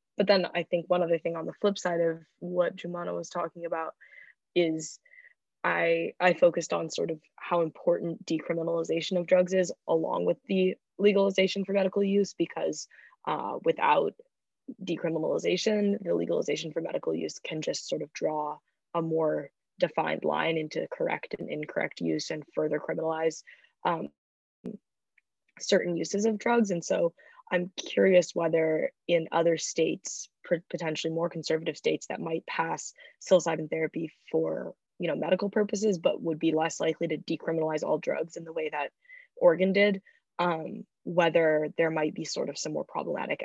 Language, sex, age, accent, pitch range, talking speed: English, female, 20-39, American, 160-200 Hz, 160 wpm